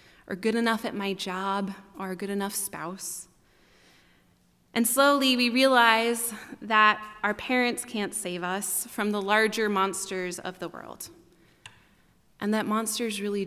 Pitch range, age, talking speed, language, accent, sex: 195-235 Hz, 20-39, 145 wpm, English, American, female